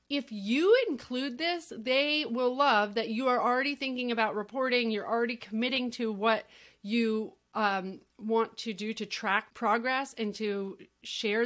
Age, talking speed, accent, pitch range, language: 30-49, 155 wpm, American, 210-255 Hz, English